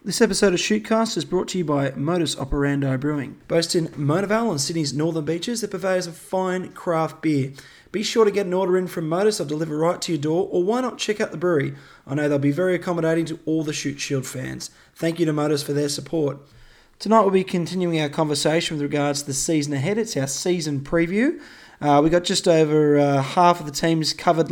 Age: 20-39